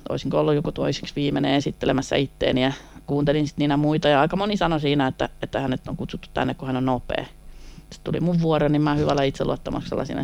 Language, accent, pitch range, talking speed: Finnish, native, 130-160 Hz, 210 wpm